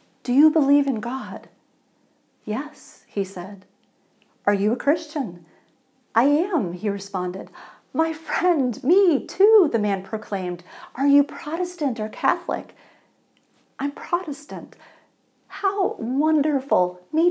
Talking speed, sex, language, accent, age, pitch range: 115 wpm, female, English, American, 50-69, 225-315 Hz